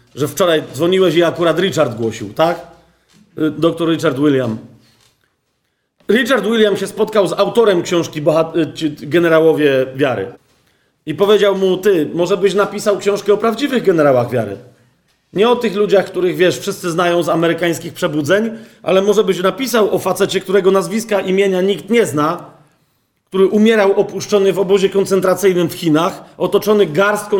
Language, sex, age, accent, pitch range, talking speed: Polish, male, 40-59, native, 160-200 Hz, 145 wpm